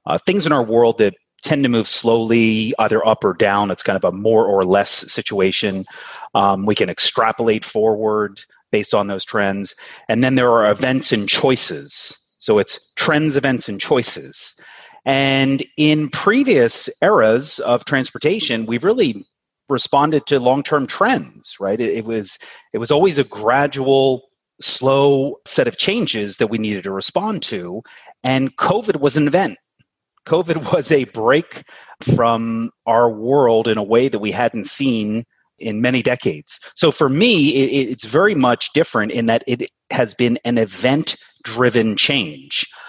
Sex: male